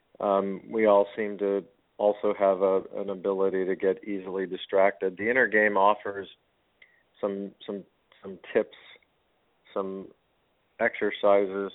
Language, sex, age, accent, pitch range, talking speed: English, male, 50-69, American, 95-105 Hz, 125 wpm